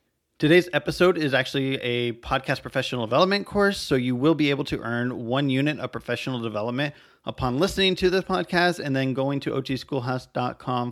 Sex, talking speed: male, 170 wpm